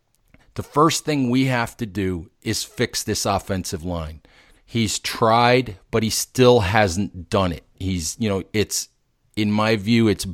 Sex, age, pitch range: male, 40-59, 105-130 Hz